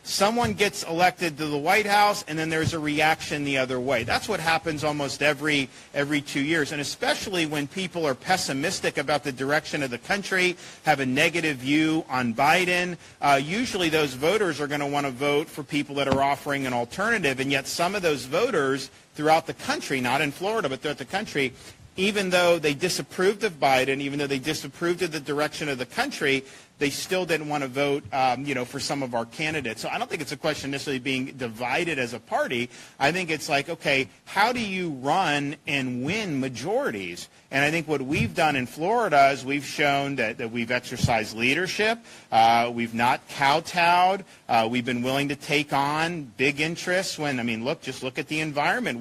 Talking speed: 205 wpm